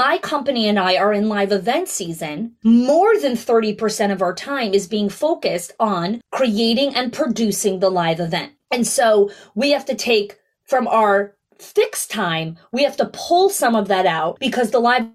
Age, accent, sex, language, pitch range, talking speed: 30-49, American, female, English, 200-275 Hz, 180 wpm